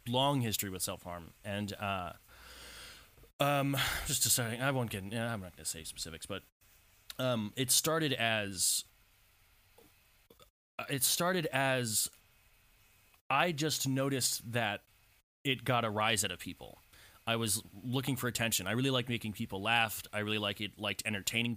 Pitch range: 100-130 Hz